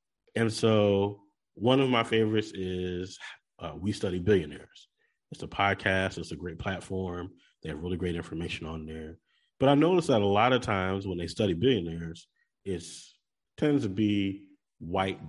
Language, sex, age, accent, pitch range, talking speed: English, male, 30-49, American, 90-125 Hz, 165 wpm